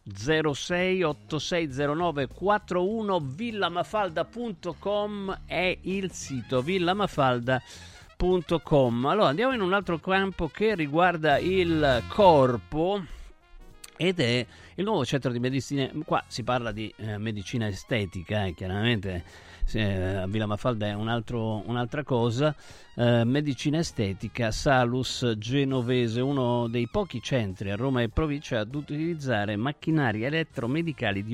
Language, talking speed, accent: Italian, 105 wpm, native